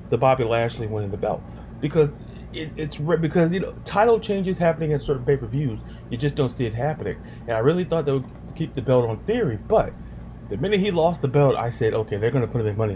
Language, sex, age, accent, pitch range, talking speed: English, male, 30-49, American, 110-150 Hz, 235 wpm